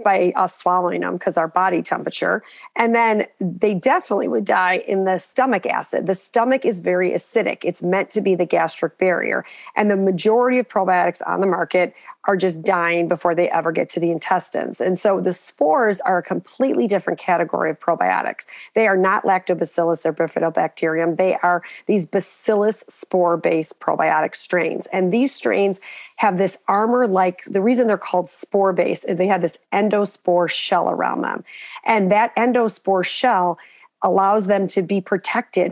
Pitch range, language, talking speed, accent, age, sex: 175-205 Hz, English, 170 wpm, American, 40-59, female